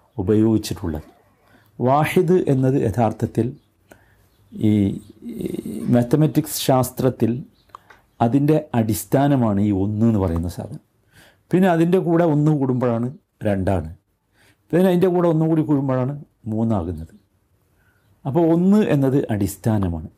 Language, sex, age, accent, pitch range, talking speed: Malayalam, male, 50-69, native, 100-145 Hz, 85 wpm